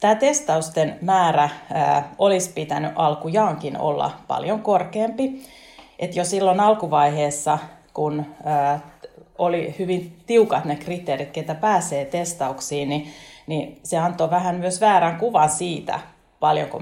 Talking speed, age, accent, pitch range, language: 110 wpm, 30-49, native, 150-190 Hz, Finnish